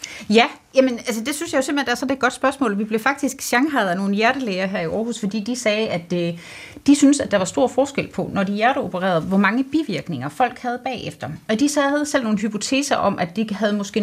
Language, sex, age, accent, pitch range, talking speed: Danish, female, 30-49, native, 180-240 Hz, 250 wpm